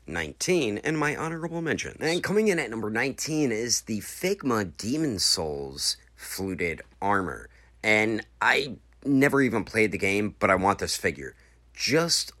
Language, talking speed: English, 150 wpm